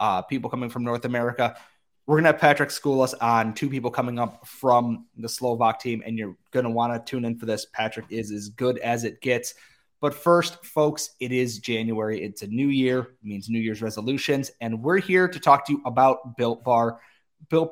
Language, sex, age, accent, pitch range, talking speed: English, male, 30-49, American, 115-150 Hz, 215 wpm